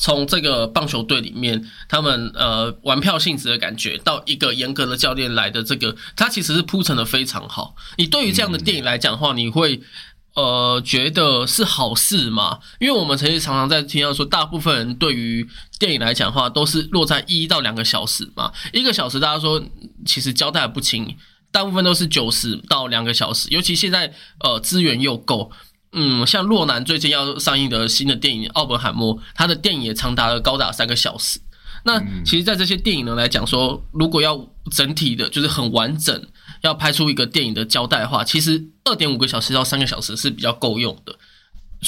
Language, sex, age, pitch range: Chinese, male, 20-39, 120-165 Hz